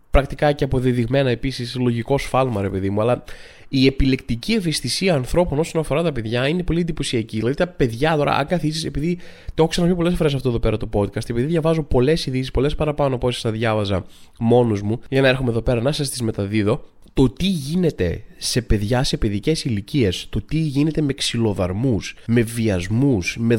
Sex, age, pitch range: male, 20-39, 115-155 Hz